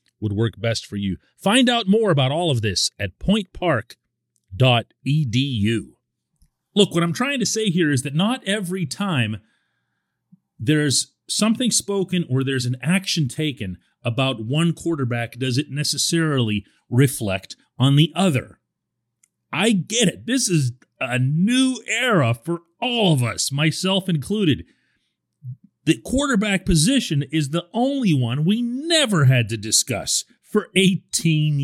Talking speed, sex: 135 wpm, male